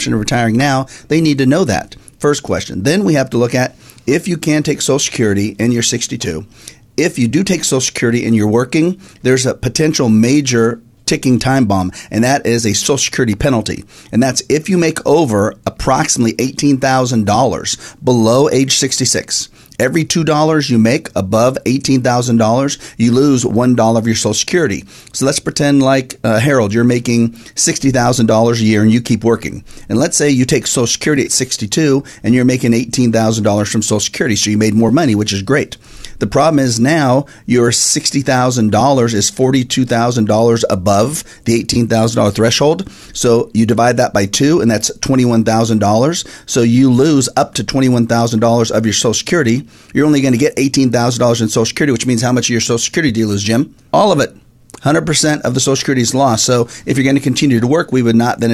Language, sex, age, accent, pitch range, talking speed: English, male, 40-59, American, 115-135 Hz, 190 wpm